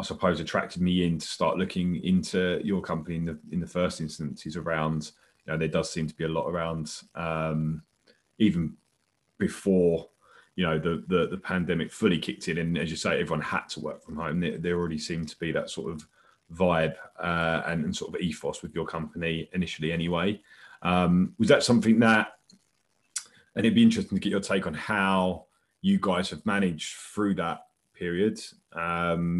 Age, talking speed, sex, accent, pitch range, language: 20-39, 190 wpm, male, British, 85-105 Hz, English